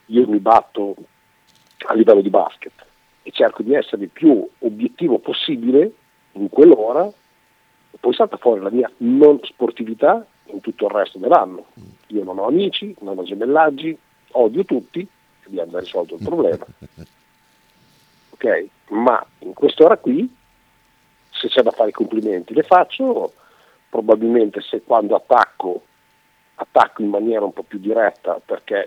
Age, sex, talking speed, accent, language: 50-69, male, 140 wpm, native, Italian